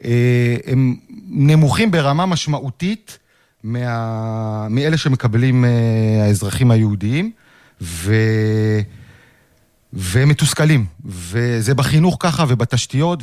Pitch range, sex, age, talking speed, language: 125-180 Hz, male, 40-59, 70 wpm, Hebrew